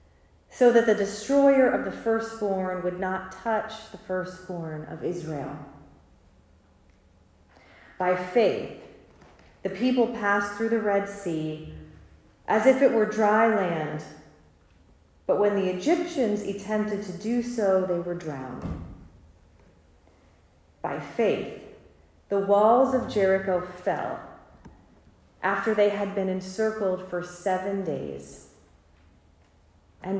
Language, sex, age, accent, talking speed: English, female, 40-59, American, 110 wpm